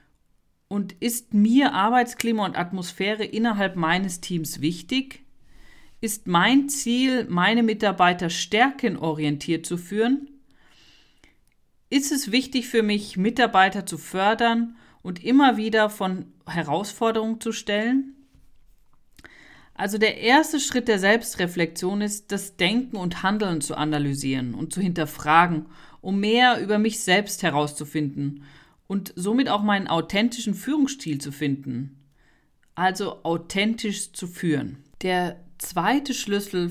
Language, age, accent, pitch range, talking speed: German, 40-59, German, 170-230 Hz, 115 wpm